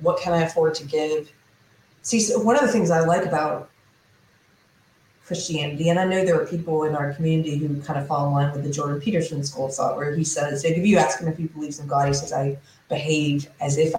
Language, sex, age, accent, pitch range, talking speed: English, female, 30-49, American, 150-180 Hz, 235 wpm